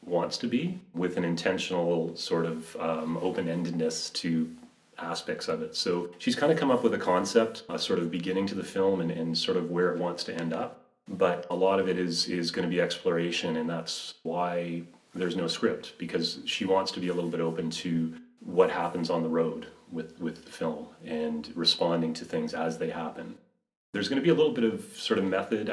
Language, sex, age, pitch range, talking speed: English, male, 30-49, 85-100 Hz, 220 wpm